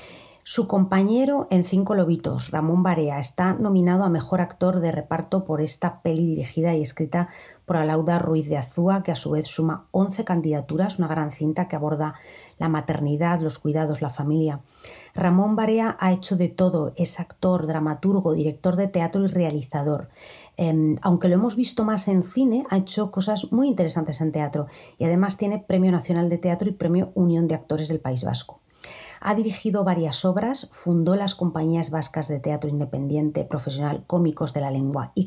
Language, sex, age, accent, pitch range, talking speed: Spanish, female, 40-59, Spanish, 155-185 Hz, 175 wpm